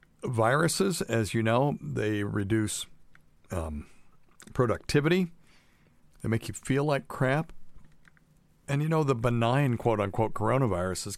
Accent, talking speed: American, 120 wpm